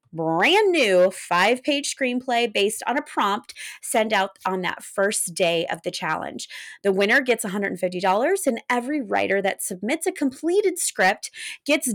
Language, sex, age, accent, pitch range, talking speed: English, female, 30-49, American, 190-280 Hz, 150 wpm